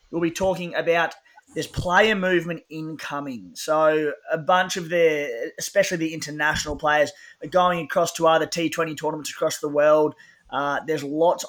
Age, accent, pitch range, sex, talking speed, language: 20-39, Australian, 155-180 Hz, male, 155 wpm, English